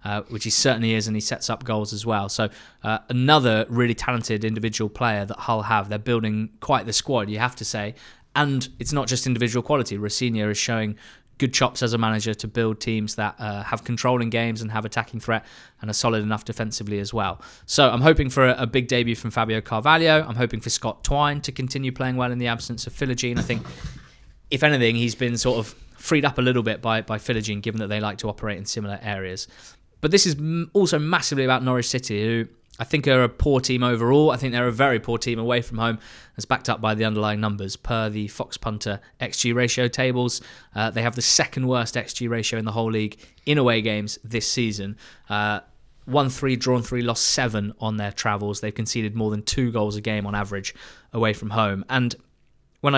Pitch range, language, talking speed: 110-125 Hz, English, 225 wpm